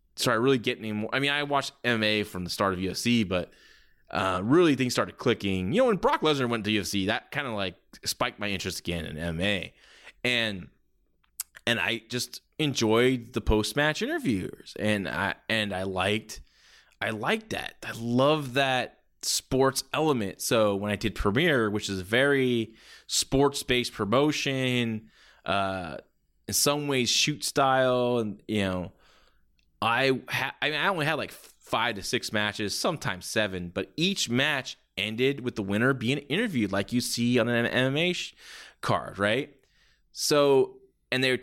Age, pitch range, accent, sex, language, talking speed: 20-39, 105-130 Hz, American, male, English, 170 wpm